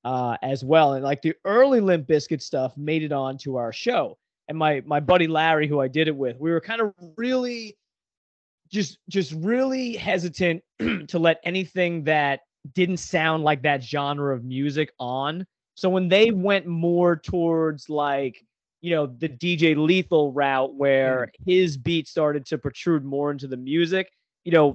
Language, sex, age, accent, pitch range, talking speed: English, male, 30-49, American, 140-180 Hz, 175 wpm